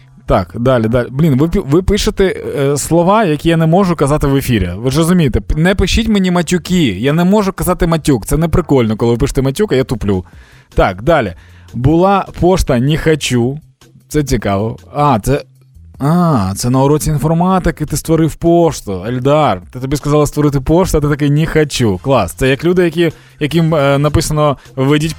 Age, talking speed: 20-39, 175 wpm